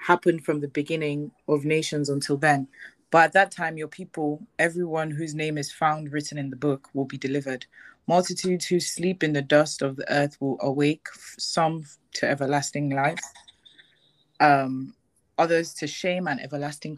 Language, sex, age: English, female, 20-39